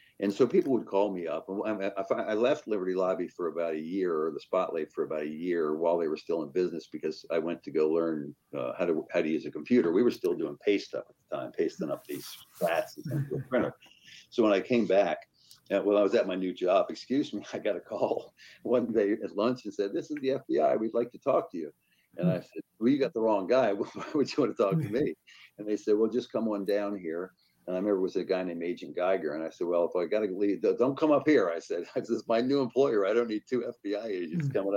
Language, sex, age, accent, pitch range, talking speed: English, male, 60-79, American, 95-145 Hz, 270 wpm